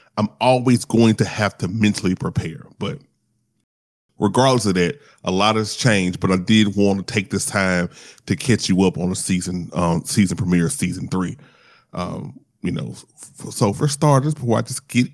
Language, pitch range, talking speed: English, 100-145 Hz, 185 wpm